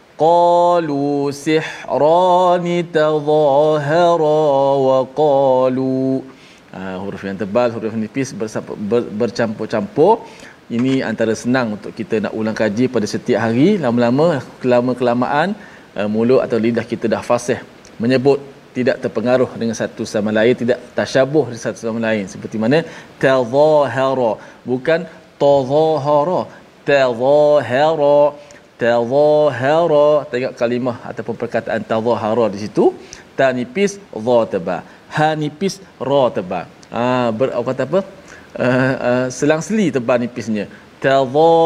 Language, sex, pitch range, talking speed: Malayalam, male, 115-150 Hz, 110 wpm